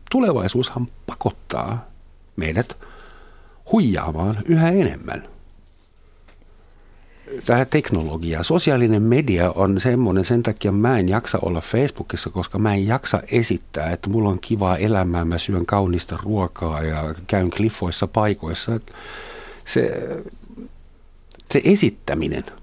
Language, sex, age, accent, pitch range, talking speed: Finnish, male, 60-79, native, 85-115 Hz, 105 wpm